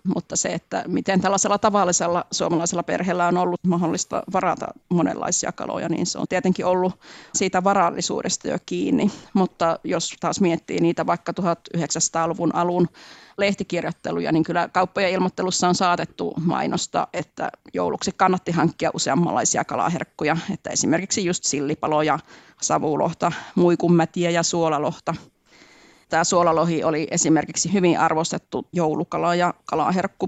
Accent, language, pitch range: native, Finnish, 160-180 Hz